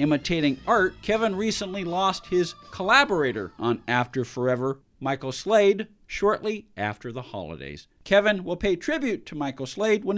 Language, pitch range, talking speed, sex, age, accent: English, 155-205 Hz, 140 wpm, male, 50-69, American